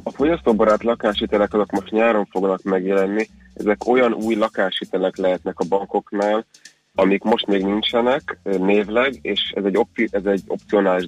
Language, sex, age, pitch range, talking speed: Hungarian, male, 30-49, 90-105 Hz, 130 wpm